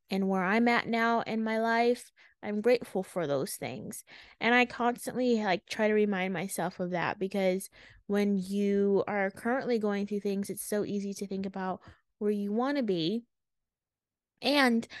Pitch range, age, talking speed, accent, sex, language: 195-230 Hz, 20-39, 170 wpm, American, female, English